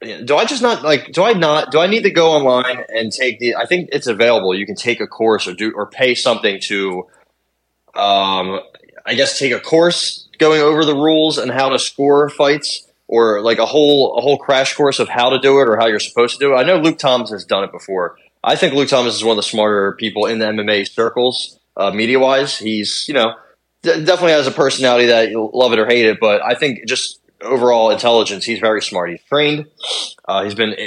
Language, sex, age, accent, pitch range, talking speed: English, male, 20-39, American, 105-140 Hz, 235 wpm